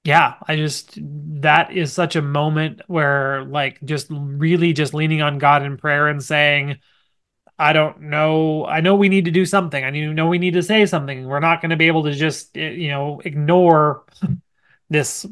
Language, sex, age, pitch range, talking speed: English, male, 30-49, 140-165 Hz, 190 wpm